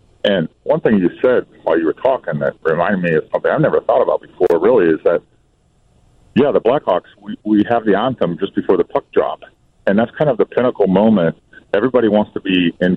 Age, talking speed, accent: 40-59, 215 wpm, American